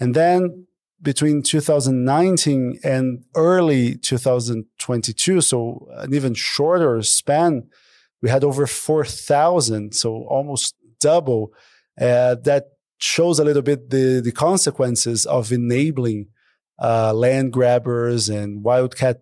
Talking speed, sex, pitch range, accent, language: 110 wpm, male, 125-150 Hz, Brazilian, English